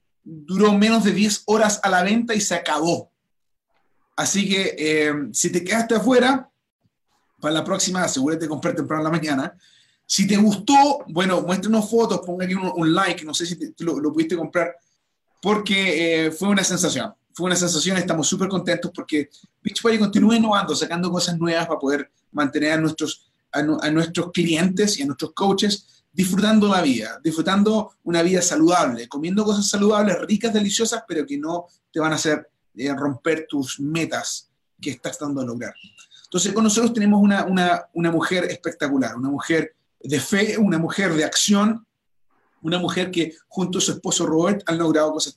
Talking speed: 175 wpm